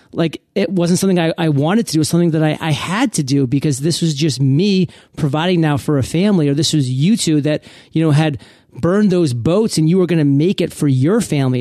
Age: 30-49